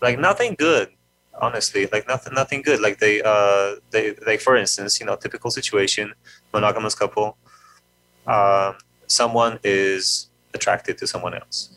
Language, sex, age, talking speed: English, male, 30-49, 145 wpm